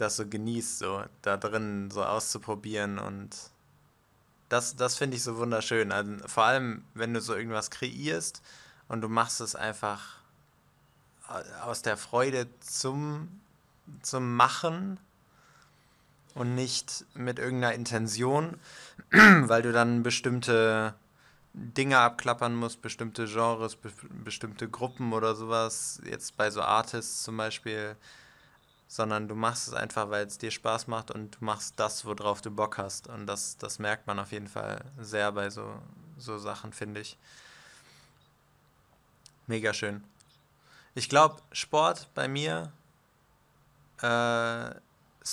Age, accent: 20-39, German